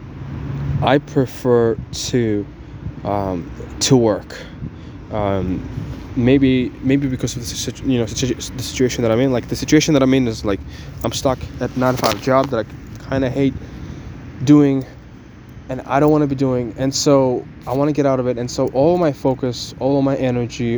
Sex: male